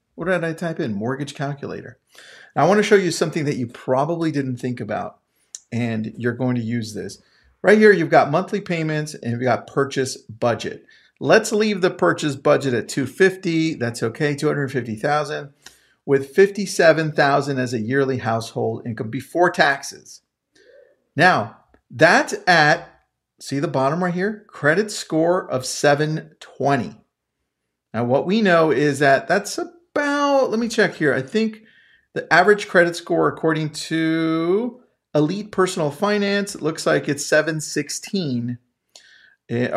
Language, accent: English, American